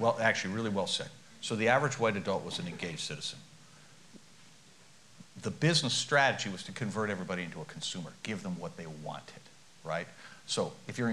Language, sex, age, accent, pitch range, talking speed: English, male, 50-69, American, 115-145 Hz, 180 wpm